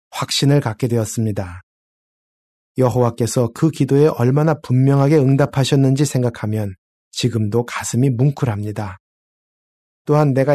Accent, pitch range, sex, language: native, 115-150 Hz, male, Korean